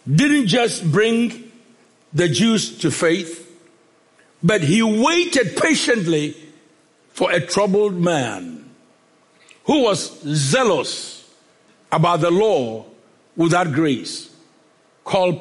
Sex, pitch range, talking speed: male, 185-250 Hz, 95 wpm